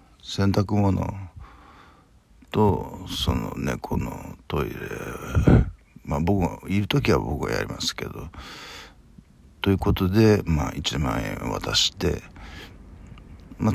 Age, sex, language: 50-69, male, Japanese